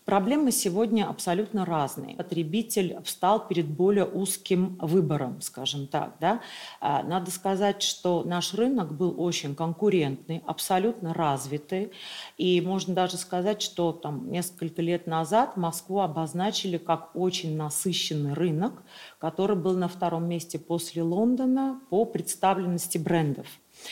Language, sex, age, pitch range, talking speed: Russian, female, 40-59, 160-195 Hz, 115 wpm